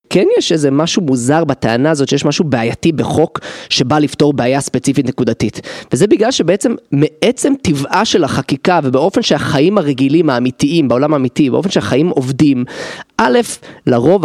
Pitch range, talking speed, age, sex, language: 140-190 Hz, 145 wpm, 30-49, male, Hebrew